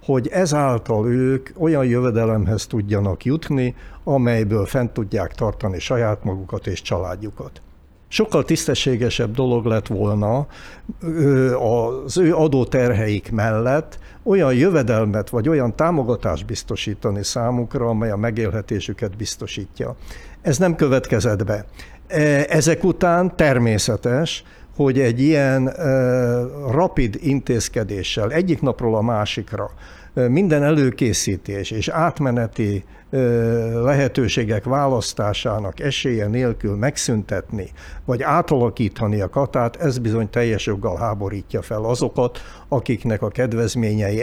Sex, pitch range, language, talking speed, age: male, 110-140 Hz, Hungarian, 100 wpm, 60-79